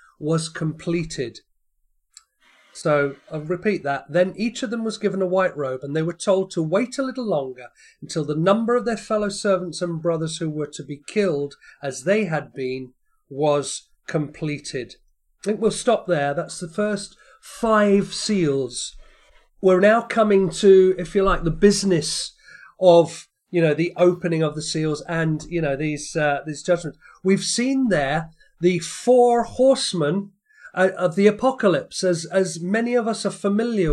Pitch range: 155-205 Hz